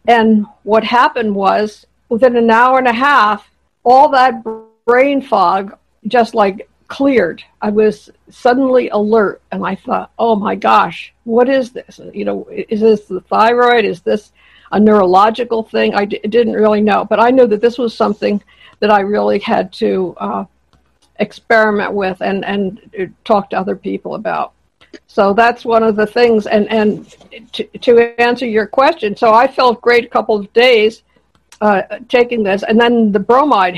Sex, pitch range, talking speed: female, 205-240 Hz, 170 wpm